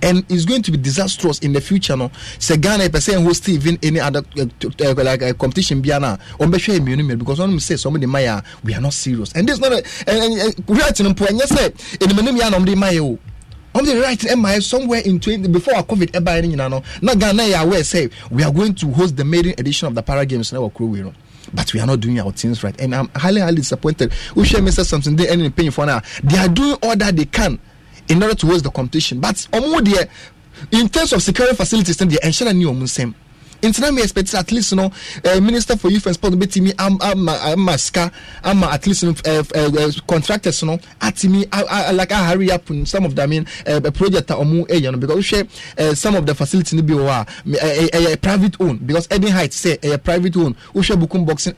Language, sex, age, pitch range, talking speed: English, male, 30-49, 140-190 Hz, 240 wpm